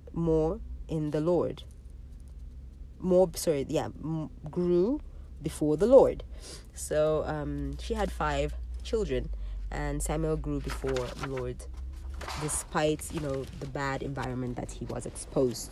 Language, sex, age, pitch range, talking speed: English, female, 30-49, 125-155 Hz, 125 wpm